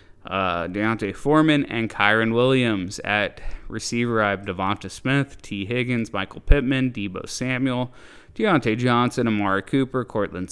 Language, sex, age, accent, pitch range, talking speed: English, male, 20-39, American, 100-125 Hz, 130 wpm